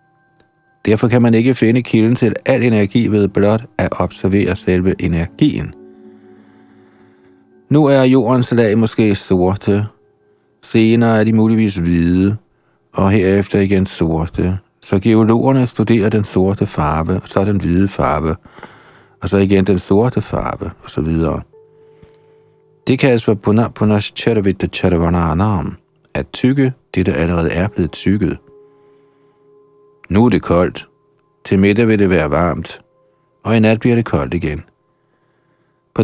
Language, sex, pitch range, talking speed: Danish, male, 95-120 Hz, 140 wpm